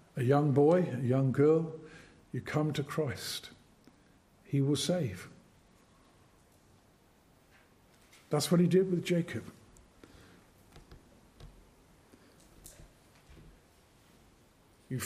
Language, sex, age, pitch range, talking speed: English, male, 50-69, 135-175 Hz, 80 wpm